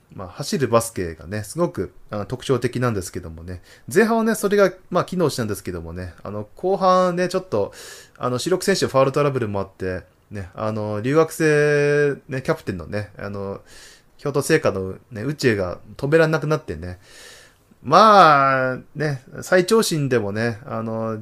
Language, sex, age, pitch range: Japanese, male, 20-39, 105-165 Hz